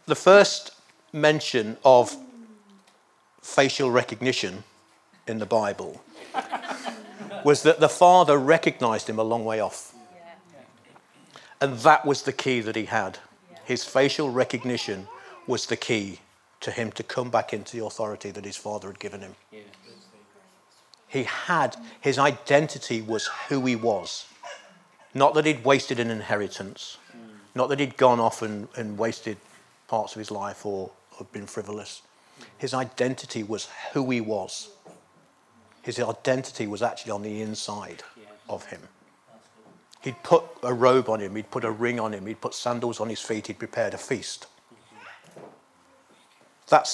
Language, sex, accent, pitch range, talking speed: English, male, British, 110-145 Hz, 145 wpm